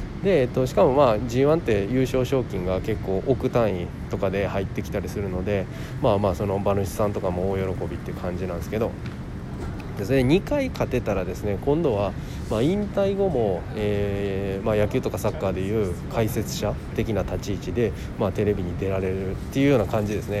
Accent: native